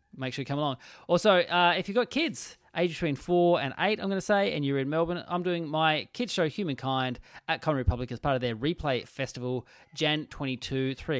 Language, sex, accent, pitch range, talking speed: English, male, Australian, 135-180 Hz, 225 wpm